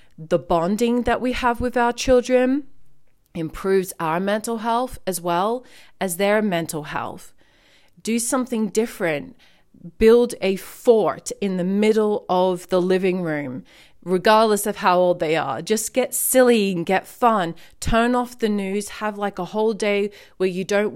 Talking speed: 155 wpm